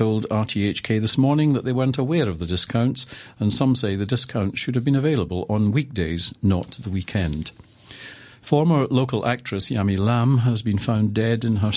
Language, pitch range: English, 95-120 Hz